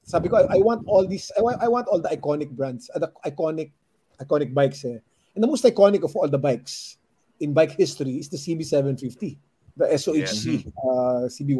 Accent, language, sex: Filipino, English, male